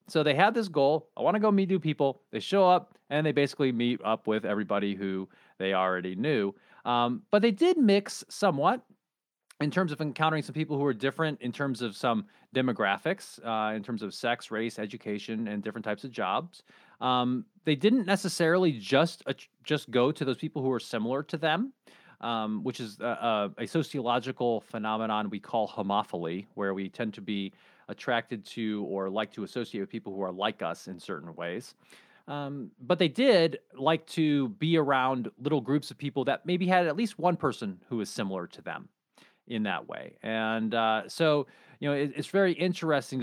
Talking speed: 195 wpm